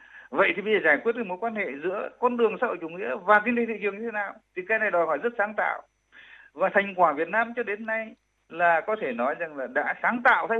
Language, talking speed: Vietnamese, 290 wpm